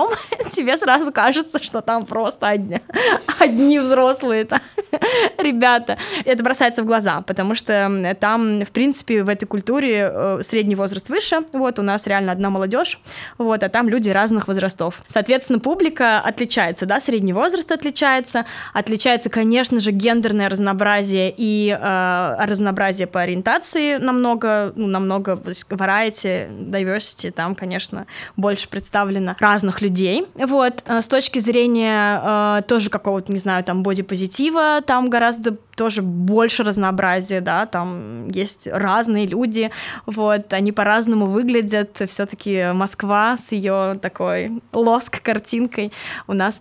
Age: 20-39